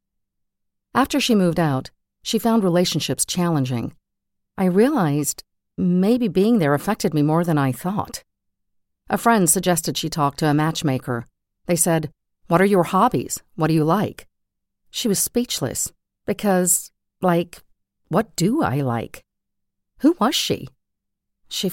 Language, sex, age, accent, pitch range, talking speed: English, female, 50-69, American, 115-190 Hz, 140 wpm